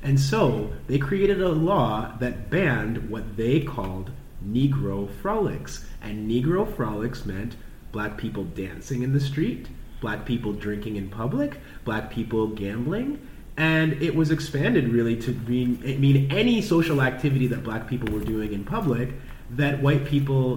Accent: American